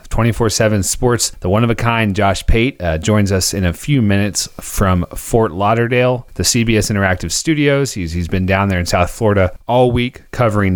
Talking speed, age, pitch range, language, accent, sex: 200 wpm, 30-49, 95-120 Hz, English, American, male